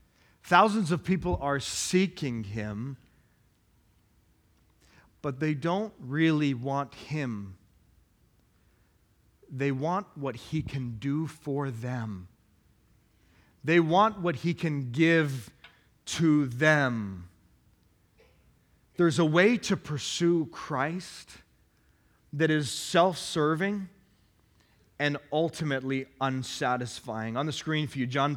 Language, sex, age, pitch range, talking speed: English, male, 40-59, 115-180 Hz, 95 wpm